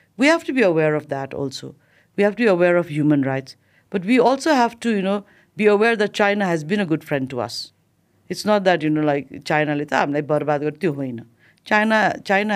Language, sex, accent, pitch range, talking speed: English, female, Indian, 150-200 Hz, 205 wpm